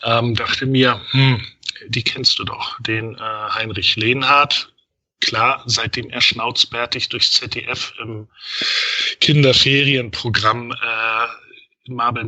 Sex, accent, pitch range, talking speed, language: male, German, 115-135 Hz, 105 wpm, German